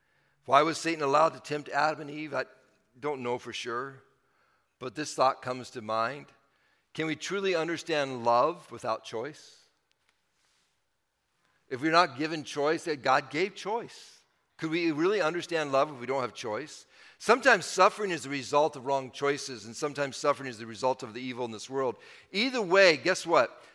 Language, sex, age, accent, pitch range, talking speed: English, male, 50-69, American, 135-200 Hz, 175 wpm